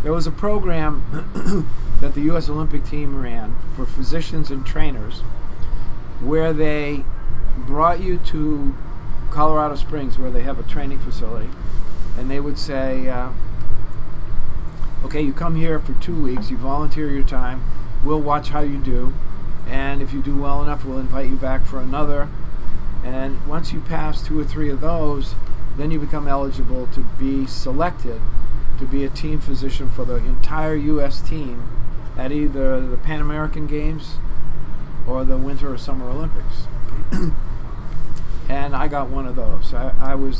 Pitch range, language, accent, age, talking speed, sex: 125-150 Hz, English, American, 50-69, 160 wpm, male